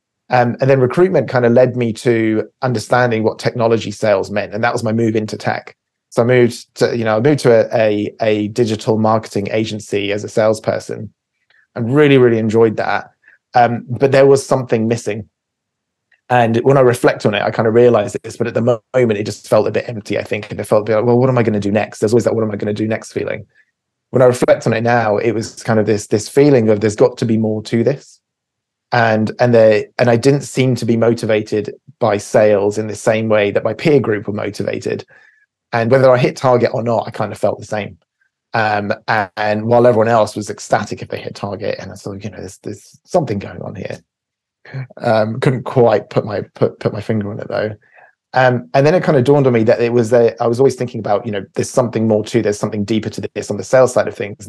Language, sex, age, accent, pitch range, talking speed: English, male, 20-39, British, 110-125 Hz, 250 wpm